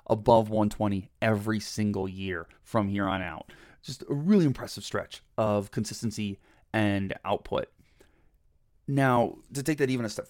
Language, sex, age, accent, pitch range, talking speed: English, male, 30-49, American, 105-140 Hz, 145 wpm